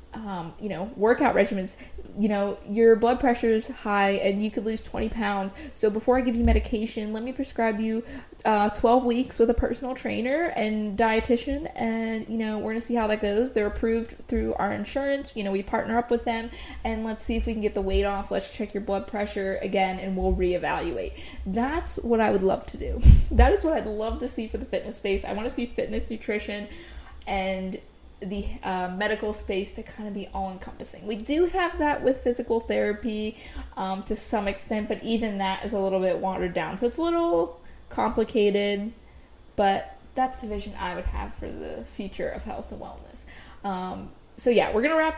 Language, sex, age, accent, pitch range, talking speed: English, female, 20-39, American, 200-240 Hz, 210 wpm